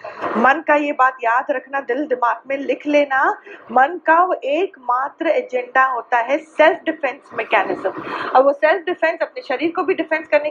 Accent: native